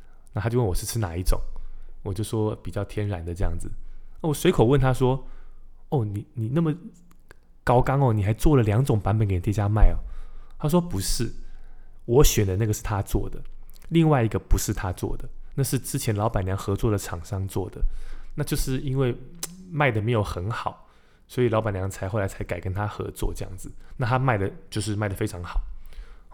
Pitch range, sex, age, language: 95-125 Hz, male, 20-39, Chinese